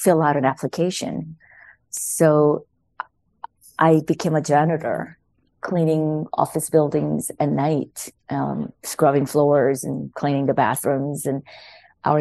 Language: English